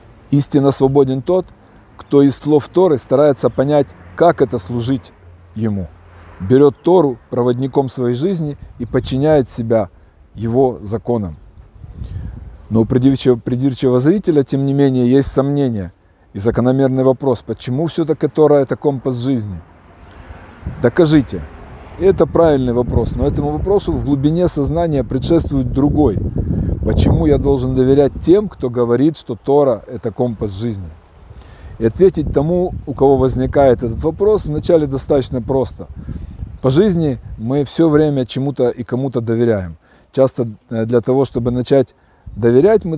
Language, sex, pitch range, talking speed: Russian, male, 110-140 Hz, 130 wpm